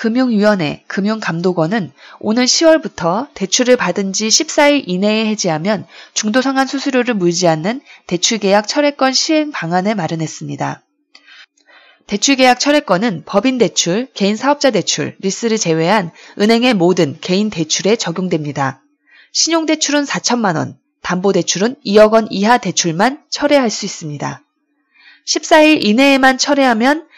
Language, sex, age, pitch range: Korean, female, 20-39, 195-285 Hz